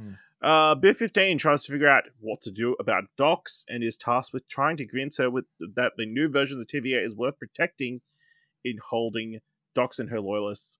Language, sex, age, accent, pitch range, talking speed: English, male, 20-39, Australian, 105-150 Hz, 210 wpm